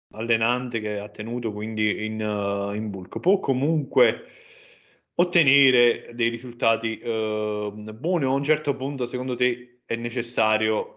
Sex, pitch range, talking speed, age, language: male, 105-130 Hz, 135 wpm, 20-39, Italian